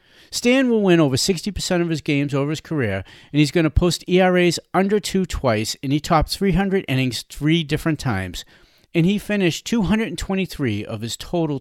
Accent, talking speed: American, 180 wpm